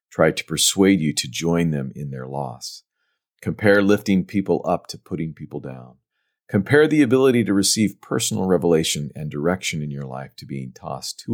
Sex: male